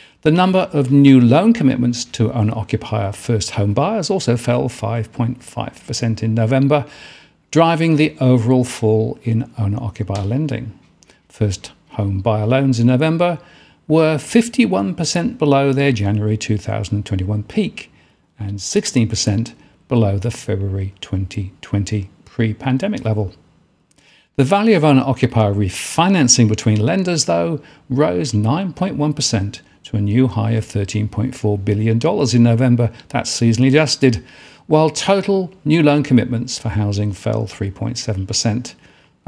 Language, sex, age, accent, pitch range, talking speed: English, male, 50-69, British, 110-145 Hz, 120 wpm